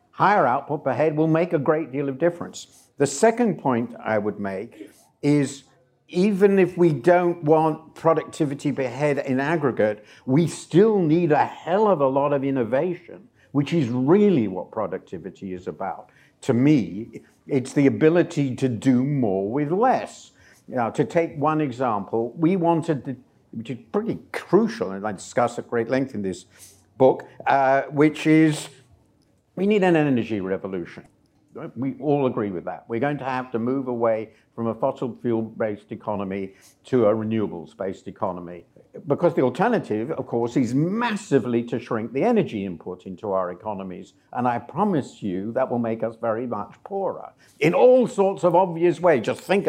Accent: British